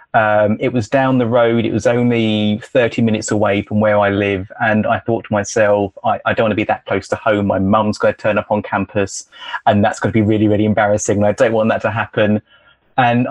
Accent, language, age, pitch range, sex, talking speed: British, English, 20-39, 105-120 Hz, male, 250 wpm